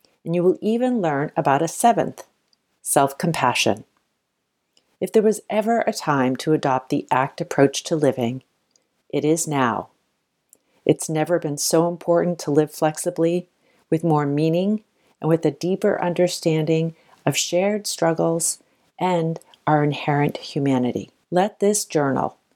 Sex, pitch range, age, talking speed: female, 145-180 Hz, 50-69, 135 wpm